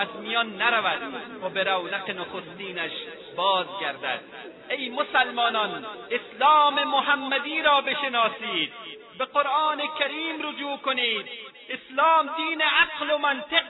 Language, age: Persian, 40-59